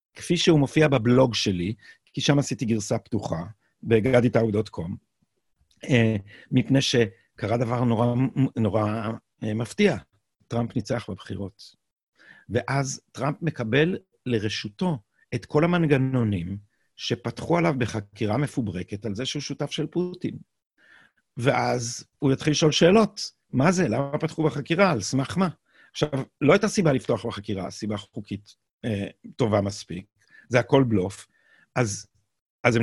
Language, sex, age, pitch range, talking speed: Hebrew, male, 50-69, 110-150 Hz, 120 wpm